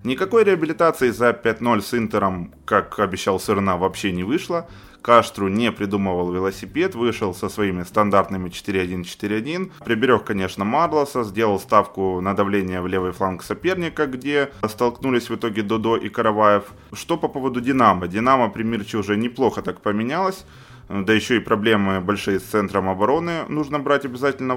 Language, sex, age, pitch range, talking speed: Ukrainian, male, 20-39, 95-120 Hz, 150 wpm